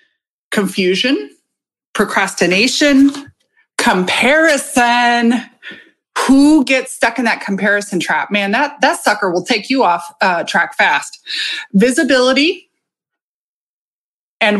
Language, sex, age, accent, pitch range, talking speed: English, female, 30-49, American, 190-265 Hz, 95 wpm